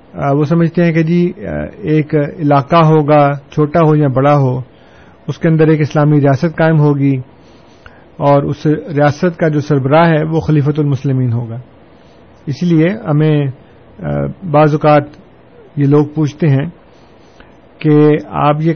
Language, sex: Urdu, male